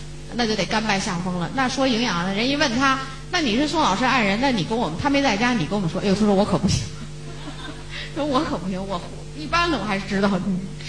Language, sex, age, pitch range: Chinese, female, 30-49, 165-270 Hz